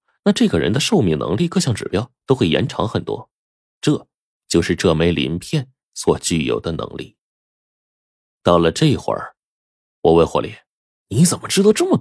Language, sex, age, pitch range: Chinese, male, 20-39, 80-95 Hz